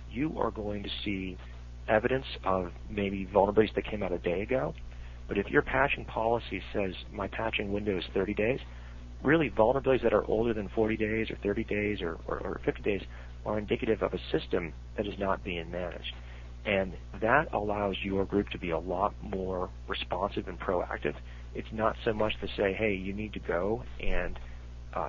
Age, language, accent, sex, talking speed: 40-59, English, American, male, 190 wpm